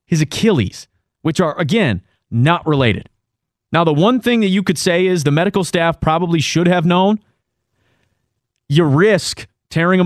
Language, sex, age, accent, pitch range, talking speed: English, male, 30-49, American, 125-175 Hz, 160 wpm